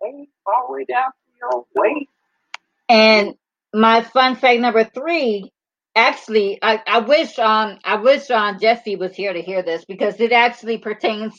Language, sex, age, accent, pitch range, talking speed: English, female, 40-59, American, 205-250 Hz, 130 wpm